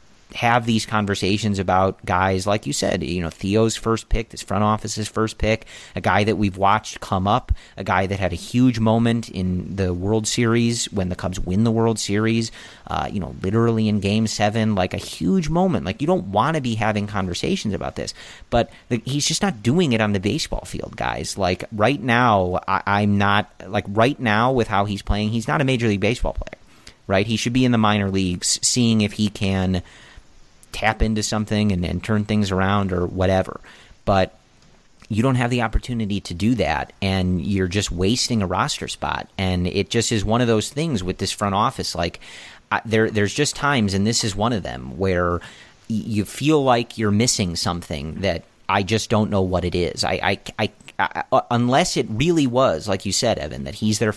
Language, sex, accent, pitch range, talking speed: English, male, American, 95-115 Hz, 205 wpm